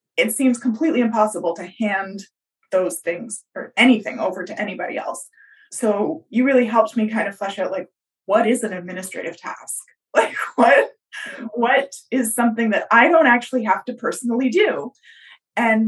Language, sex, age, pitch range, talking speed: English, female, 20-39, 190-245 Hz, 165 wpm